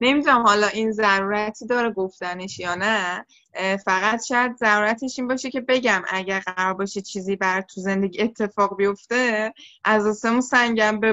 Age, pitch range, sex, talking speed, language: 20-39, 200-255 Hz, female, 150 wpm, Persian